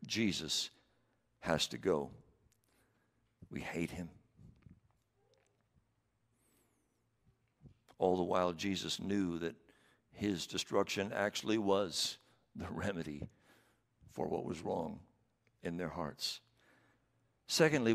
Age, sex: 60-79, male